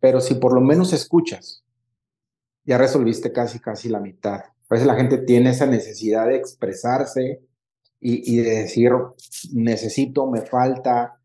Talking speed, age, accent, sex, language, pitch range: 150 wpm, 40-59, Mexican, male, Spanish, 120-130 Hz